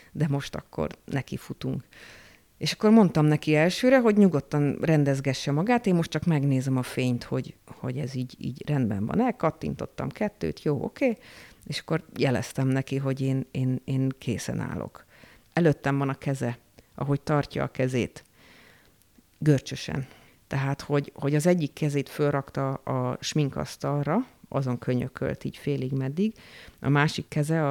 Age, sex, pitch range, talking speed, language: 50-69, female, 125-155 Hz, 150 wpm, Hungarian